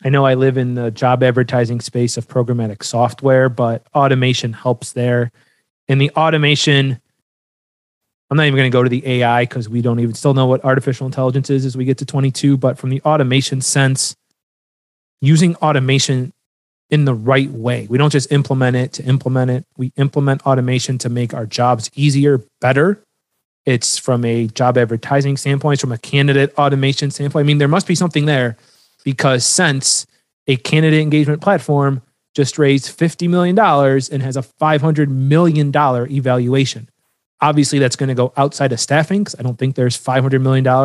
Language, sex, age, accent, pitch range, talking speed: English, male, 30-49, American, 125-145 Hz, 175 wpm